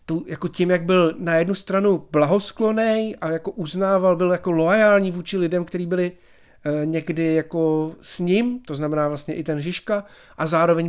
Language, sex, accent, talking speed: Czech, male, native, 175 wpm